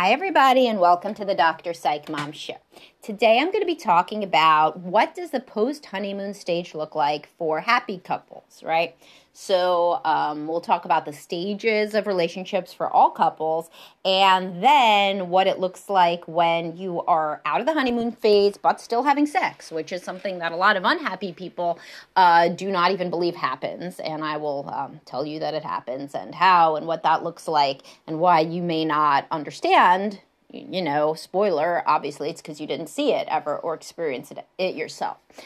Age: 30-49